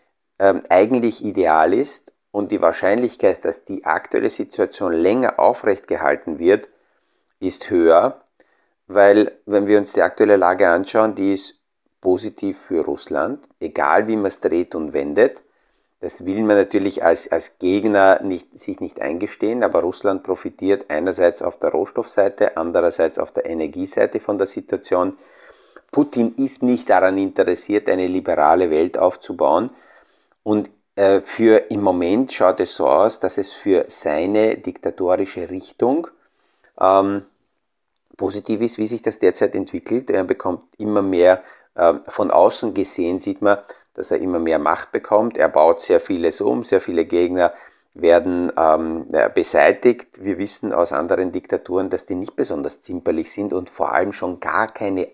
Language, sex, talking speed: German, male, 150 wpm